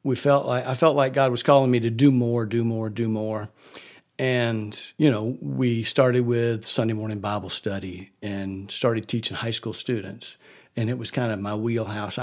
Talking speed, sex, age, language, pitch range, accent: 195 wpm, male, 50-69, English, 110-140 Hz, American